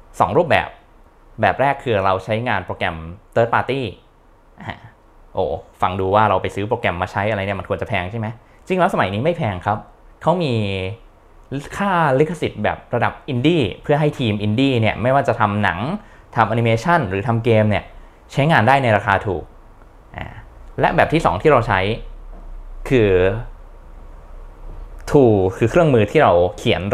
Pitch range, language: 95-120 Hz, Thai